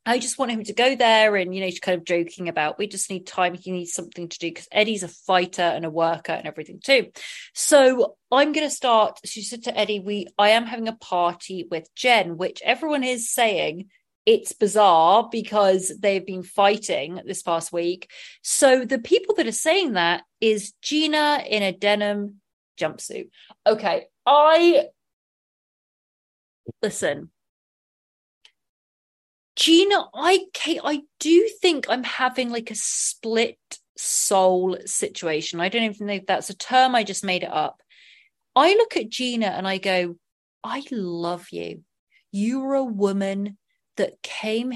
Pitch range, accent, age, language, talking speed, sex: 185-255 Hz, British, 30-49, English, 160 wpm, female